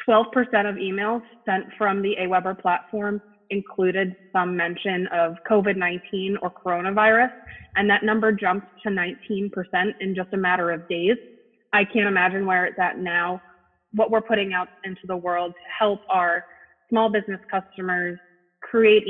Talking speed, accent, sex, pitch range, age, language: 150 wpm, American, female, 185-210 Hz, 20-39, English